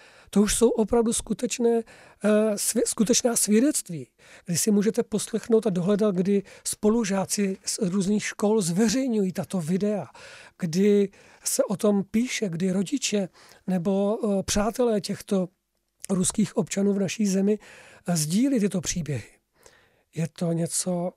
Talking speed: 115 wpm